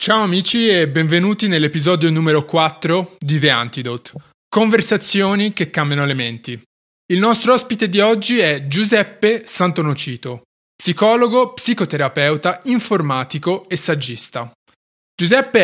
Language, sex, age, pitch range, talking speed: Italian, male, 20-39, 145-205 Hz, 110 wpm